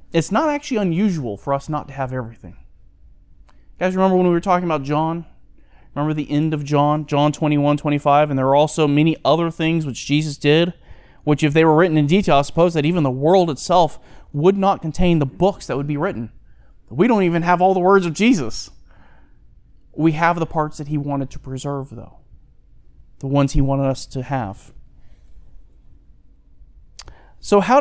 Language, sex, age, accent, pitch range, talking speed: English, male, 30-49, American, 120-165 Hz, 190 wpm